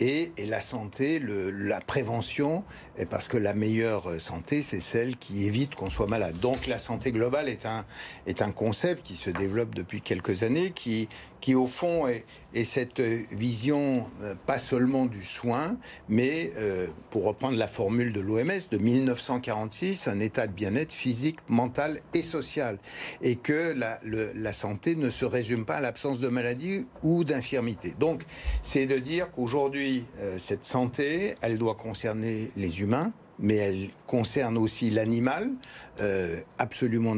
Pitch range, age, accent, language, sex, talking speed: 110-145 Hz, 60-79, French, French, male, 155 wpm